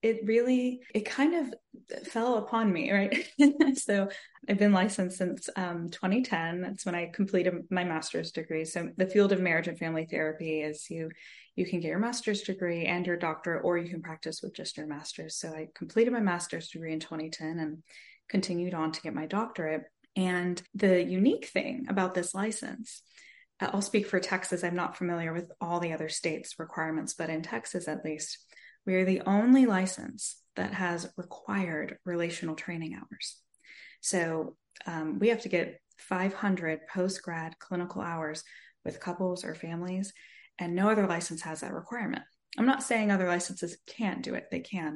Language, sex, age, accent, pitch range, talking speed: English, female, 20-39, American, 170-210 Hz, 180 wpm